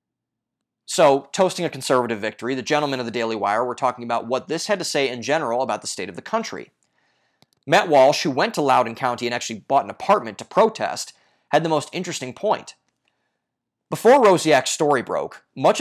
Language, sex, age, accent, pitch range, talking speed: English, male, 30-49, American, 120-155 Hz, 195 wpm